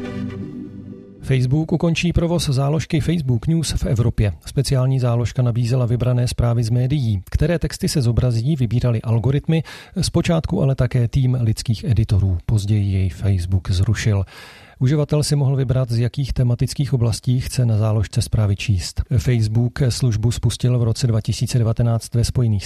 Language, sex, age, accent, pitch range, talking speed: Czech, male, 40-59, native, 110-135 Hz, 140 wpm